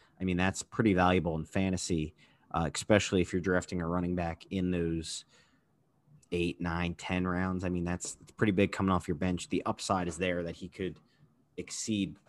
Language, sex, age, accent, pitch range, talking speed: English, male, 30-49, American, 85-105 Hz, 190 wpm